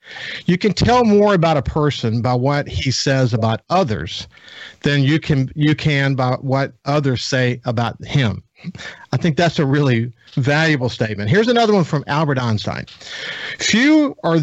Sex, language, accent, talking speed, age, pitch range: male, English, American, 160 wpm, 50-69, 125-165 Hz